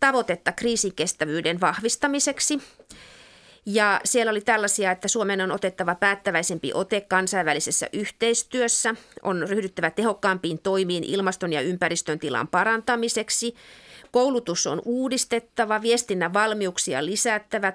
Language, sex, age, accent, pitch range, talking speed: Finnish, female, 30-49, native, 185-235 Hz, 100 wpm